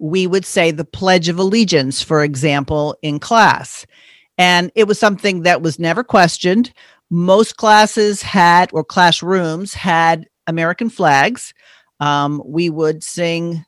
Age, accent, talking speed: 50-69, American, 135 wpm